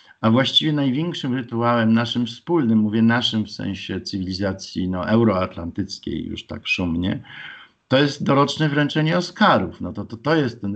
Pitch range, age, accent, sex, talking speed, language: 105-140 Hz, 50-69, native, male, 140 wpm, Polish